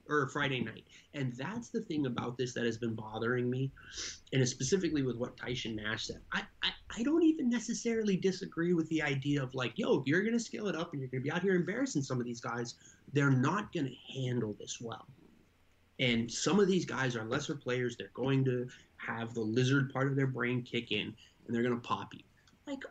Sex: male